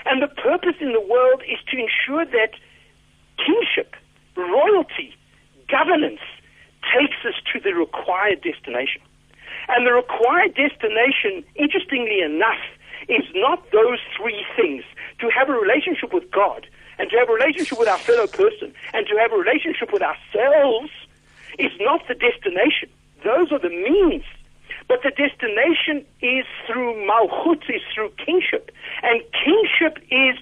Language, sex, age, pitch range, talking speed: English, male, 60-79, 250-405 Hz, 140 wpm